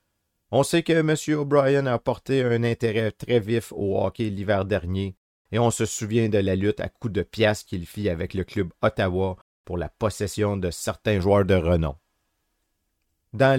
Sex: male